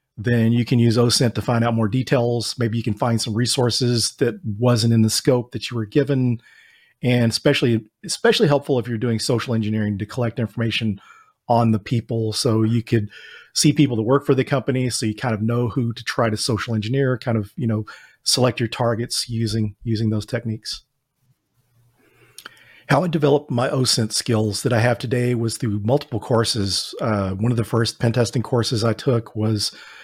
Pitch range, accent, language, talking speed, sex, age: 110-130 Hz, American, English, 195 wpm, male, 40-59